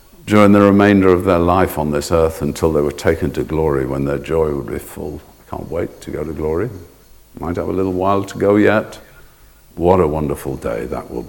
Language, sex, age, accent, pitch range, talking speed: English, male, 60-79, British, 75-100 Hz, 225 wpm